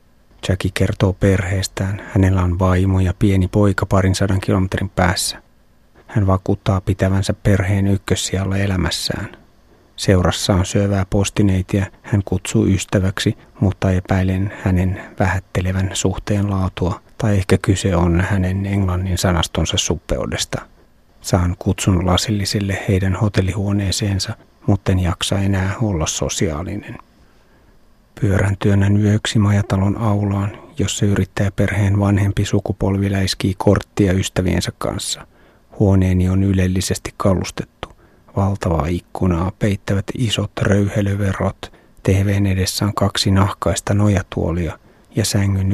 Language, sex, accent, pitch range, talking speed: Finnish, male, native, 95-105 Hz, 105 wpm